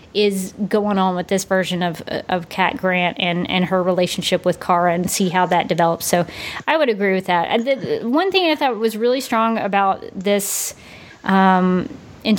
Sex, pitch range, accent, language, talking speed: female, 185-210 Hz, American, English, 190 wpm